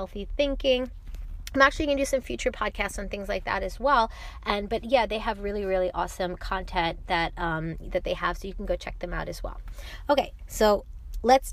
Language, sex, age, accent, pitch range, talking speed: English, female, 20-39, American, 190-265 Hz, 220 wpm